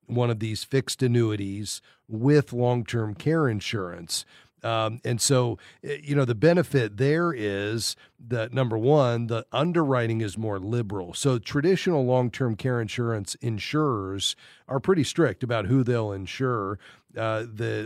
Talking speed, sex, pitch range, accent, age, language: 140 wpm, male, 110-135 Hz, American, 40-59, English